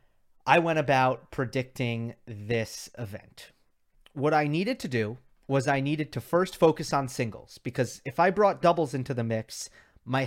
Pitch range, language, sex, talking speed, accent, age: 115-160 Hz, English, male, 165 wpm, American, 30-49